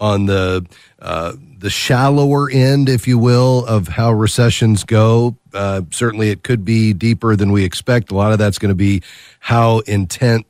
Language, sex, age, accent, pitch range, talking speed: English, male, 40-59, American, 100-120 Hz, 175 wpm